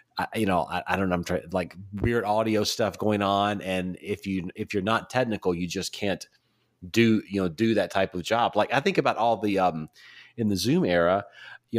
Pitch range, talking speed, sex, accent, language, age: 90-115 Hz, 230 wpm, male, American, English, 40-59